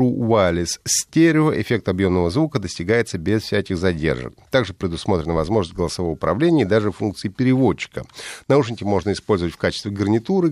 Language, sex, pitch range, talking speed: Russian, male, 90-125 Hz, 135 wpm